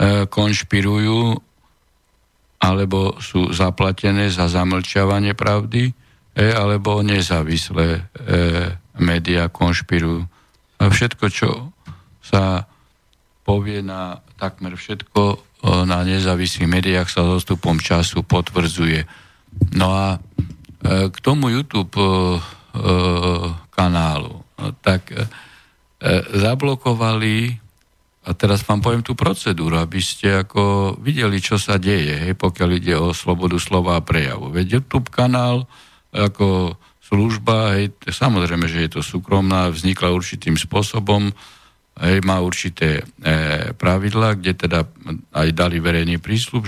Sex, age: male, 50-69